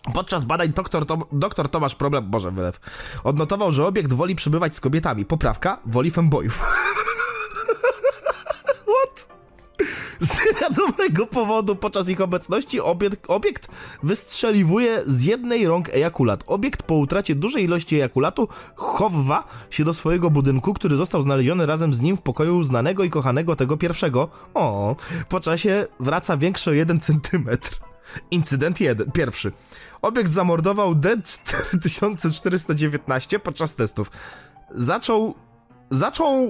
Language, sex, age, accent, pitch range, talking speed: Polish, male, 20-39, native, 140-195 Hz, 120 wpm